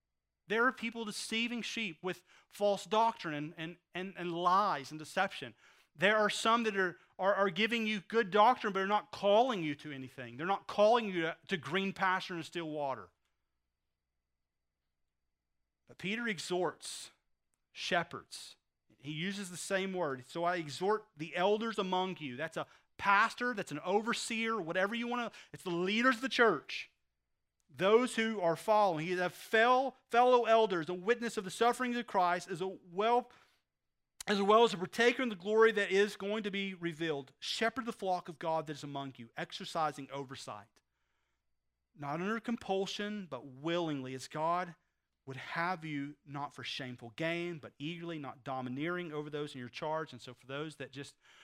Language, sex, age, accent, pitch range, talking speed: English, male, 30-49, American, 140-210 Hz, 170 wpm